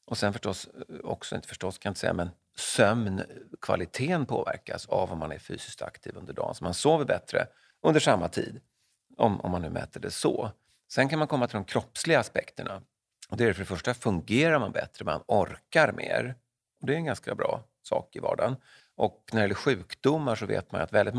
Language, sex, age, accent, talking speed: Swedish, male, 40-59, native, 205 wpm